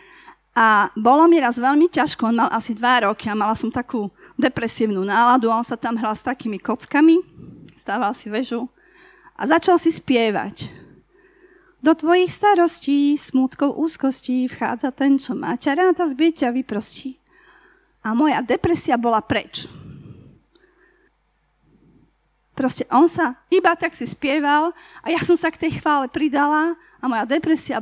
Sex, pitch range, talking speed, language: female, 235-320 Hz, 145 wpm, Slovak